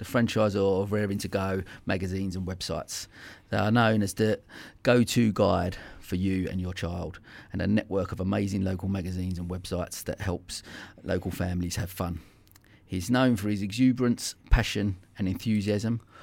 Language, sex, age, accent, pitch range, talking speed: English, male, 30-49, British, 90-105 Hz, 165 wpm